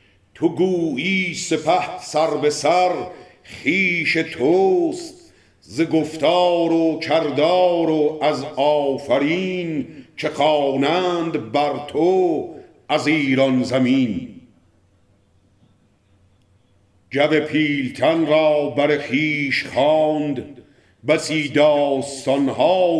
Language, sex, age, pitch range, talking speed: Persian, male, 50-69, 135-175 Hz, 75 wpm